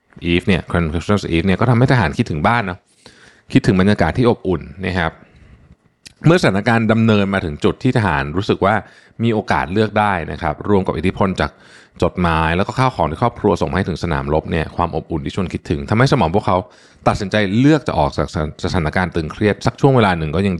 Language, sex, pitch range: Thai, male, 85-105 Hz